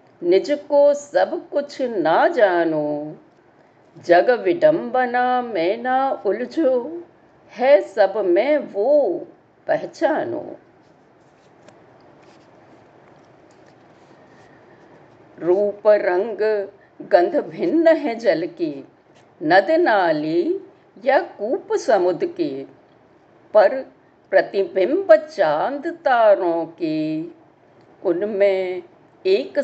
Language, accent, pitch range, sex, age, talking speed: Hindi, native, 205-330 Hz, female, 50-69, 75 wpm